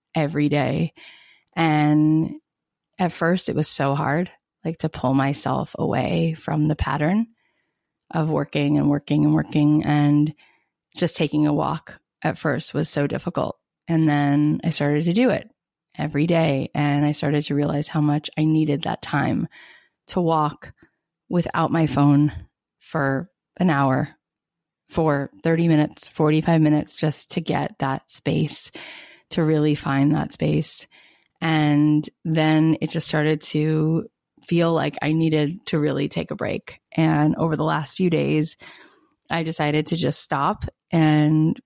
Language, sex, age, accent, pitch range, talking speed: English, female, 20-39, American, 150-165 Hz, 150 wpm